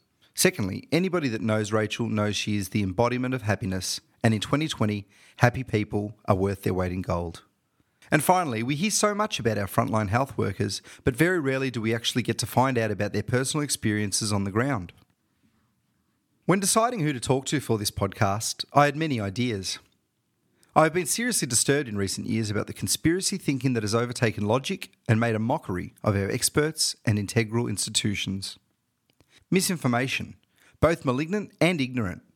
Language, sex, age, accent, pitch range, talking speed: English, male, 30-49, Australian, 105-140 Hz, 175 wpm